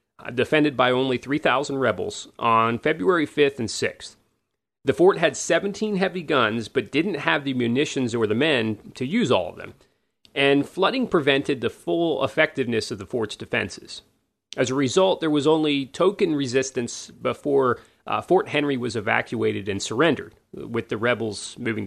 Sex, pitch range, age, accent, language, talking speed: male, 115-175 Hz, 30-49, American, English, 160 wpm